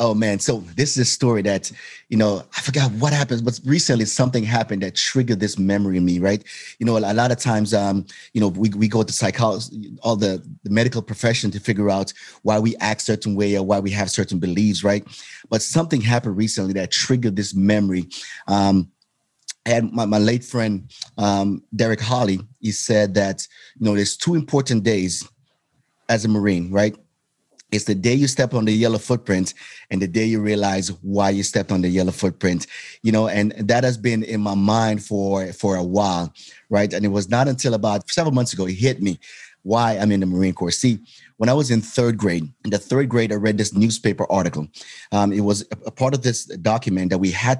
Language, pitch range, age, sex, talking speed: English, 100-120 Hz, 30-49, male, 215 wpm